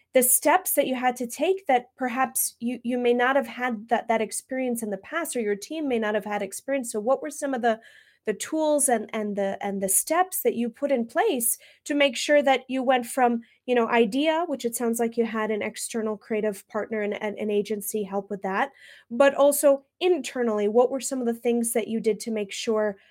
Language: English